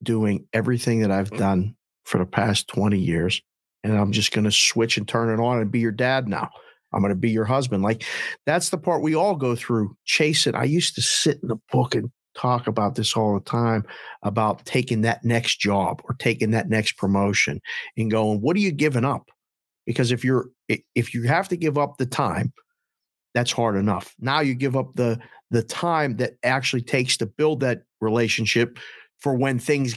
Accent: American